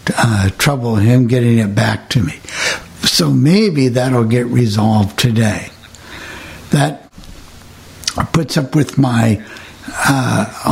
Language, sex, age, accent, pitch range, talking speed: English, male, 60-79, American, 110-150 Hz, 110 wpm